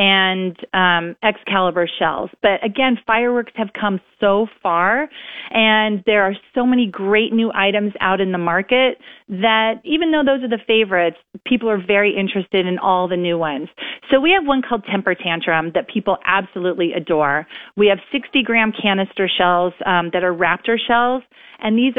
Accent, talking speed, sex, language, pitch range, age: American, 170 wpm, female, English, 180-225 Hz, 40-59